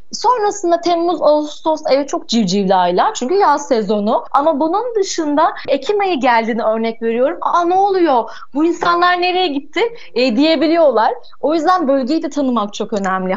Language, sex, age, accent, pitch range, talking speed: Turkish, female, 30-49, native, 240-325 Hz, 145 wpm